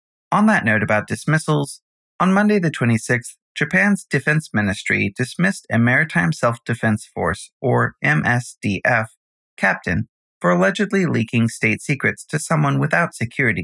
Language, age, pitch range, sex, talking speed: English, 30-49, 115-160 Hz, male, 130 wpm